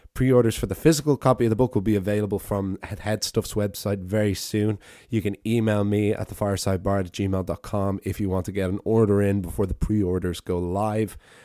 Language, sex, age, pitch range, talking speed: English, male, 20-39, 95-115 Hz, 205 wpm